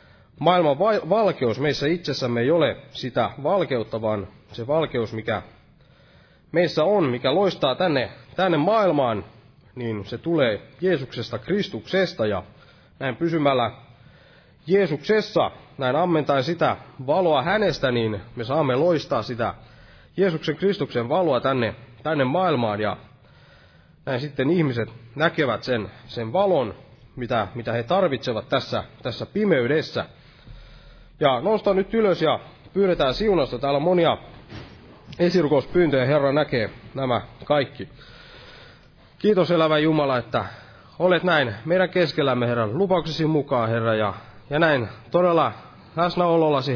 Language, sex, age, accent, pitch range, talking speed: Finnish, male, 30-49, native, 120-165 Hz, 115 wpm